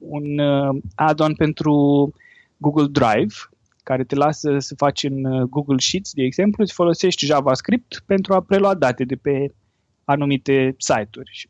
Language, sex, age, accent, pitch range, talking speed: Romanian, male, 20-39, native, 130-205 Hz, 140 wpm